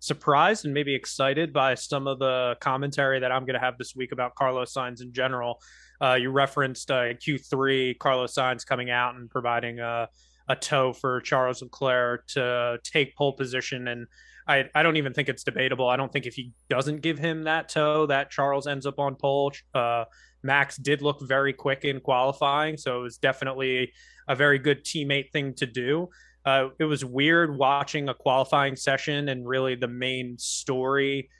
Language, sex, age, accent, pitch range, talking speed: English, male, 20-39, American, 125-145 Hz, 185 wpm